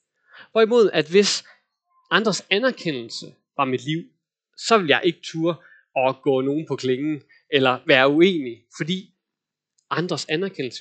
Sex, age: male, 20-39